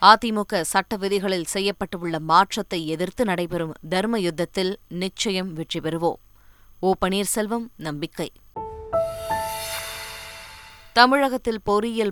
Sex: female